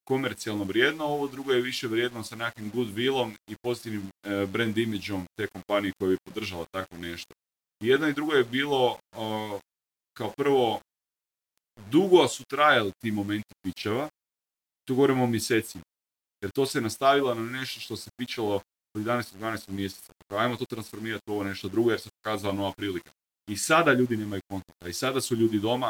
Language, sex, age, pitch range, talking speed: Croatian, male, 30-49, 100-130 Hz, 170 wpm